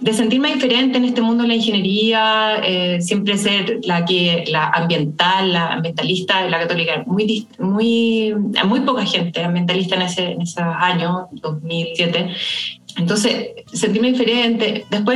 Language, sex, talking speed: Spanish, female, 145 wpm